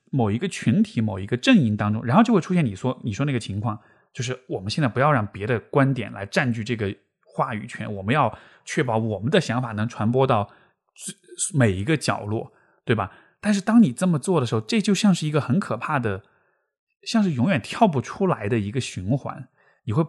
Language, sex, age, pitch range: Chinese, male, 20-39, 115-170 Hz